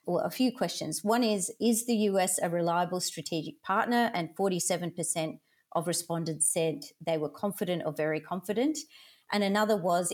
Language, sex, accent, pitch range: English, female, Australian, 165-220 Hz